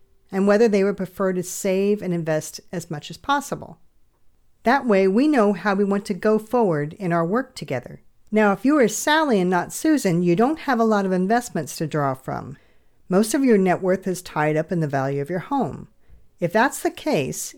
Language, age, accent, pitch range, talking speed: English, 50-69, American, 160-220 Hz, 215 wpm